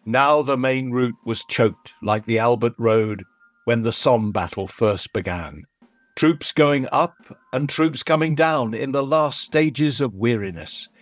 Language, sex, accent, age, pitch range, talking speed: English, male, British, 60-79, 115-150 Hz, 160 wpm